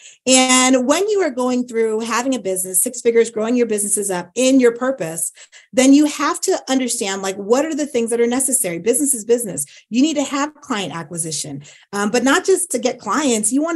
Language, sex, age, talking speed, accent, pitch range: English, female, 30-49, 215 wpm, American, 195-275 Hz